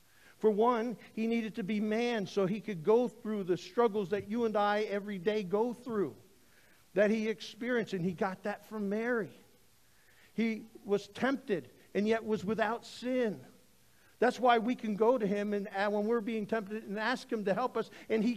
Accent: American